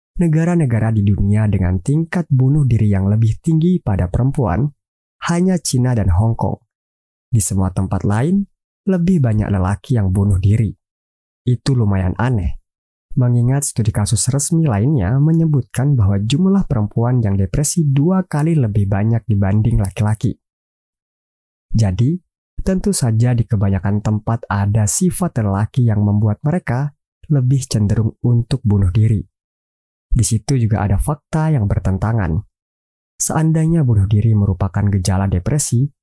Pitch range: 100-140 Hz